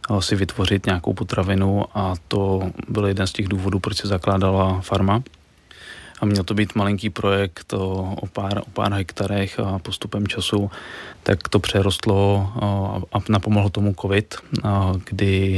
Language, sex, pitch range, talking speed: Czech, male, 95-100 Hz, 145 wpm